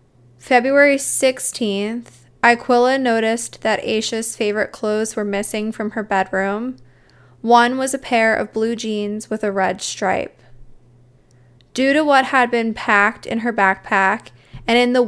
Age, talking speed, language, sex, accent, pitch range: 10-29, 145 wpm, English, female, American, 200-235 Hz